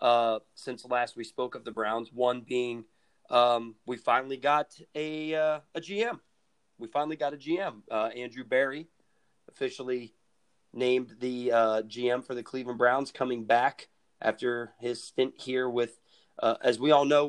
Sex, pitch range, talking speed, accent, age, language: male, 120-145 Hz, 165 wpm, American, 30-49, English